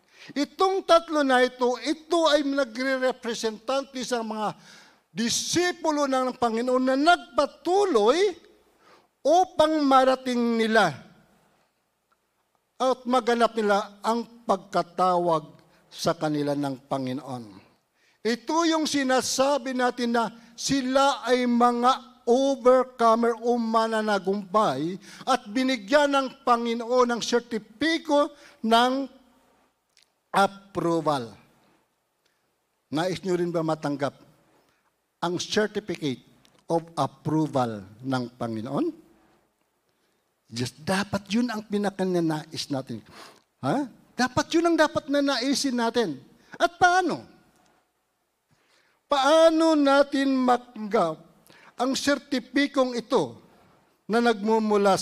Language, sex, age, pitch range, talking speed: Filipino, male, 50-69, 185-275 Hz, 85 wpm